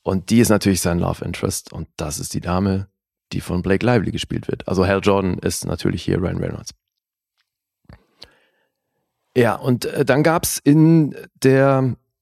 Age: 30-49